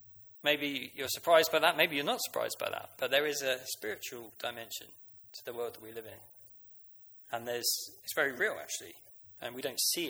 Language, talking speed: English, 200 wpm